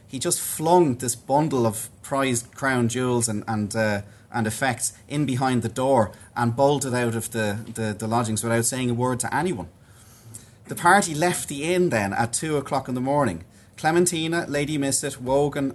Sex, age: male, 30-49